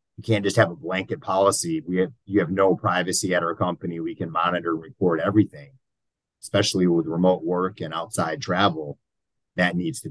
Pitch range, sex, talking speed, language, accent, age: 85-110 Hz, male, 185 wpm, English, American, 30-49